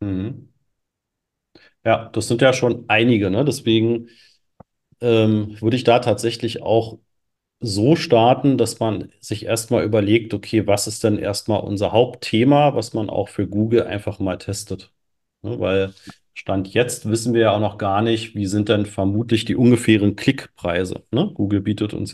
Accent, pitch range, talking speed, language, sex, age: German, 100-115 Hz, 155 wpm, German, male, 40-59